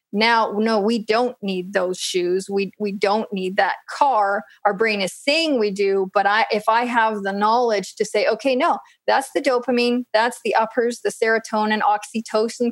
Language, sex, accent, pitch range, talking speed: English, female, American, 205-240 Hz, 185 wpm